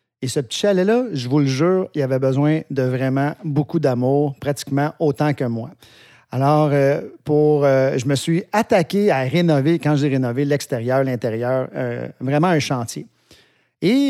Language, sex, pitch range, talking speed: French, male, 135-190 Hz, 165 wpm